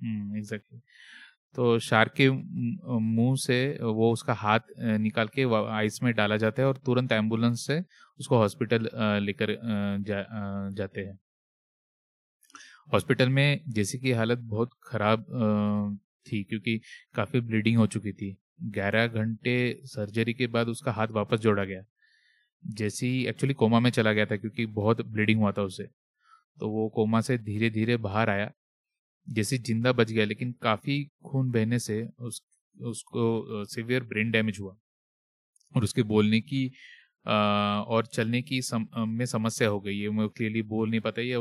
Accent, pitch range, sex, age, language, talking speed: native, 110-125 Hz, male, 30-49, Hindi, 155 wpm